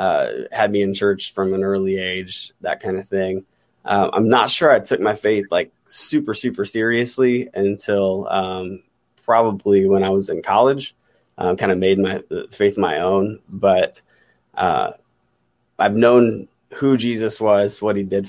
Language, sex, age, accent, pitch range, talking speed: English, male, 20-39, American, 95-105 Hz, 165 wpm